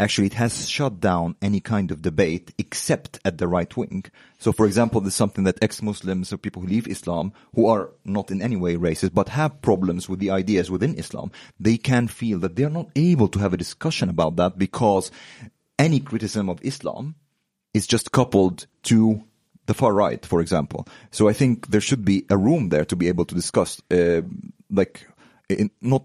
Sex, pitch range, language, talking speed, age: male, 90-115 Hz, Swedish, 200 wpm, 30-49